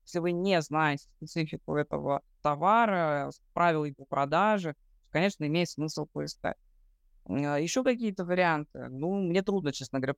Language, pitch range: Russian, 155-200 Hz